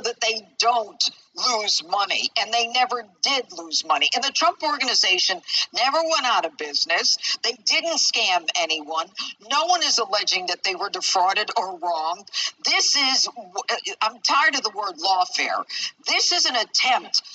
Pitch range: 195-290 Hz